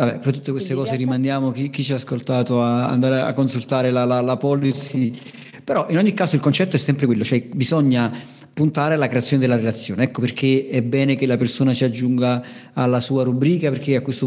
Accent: native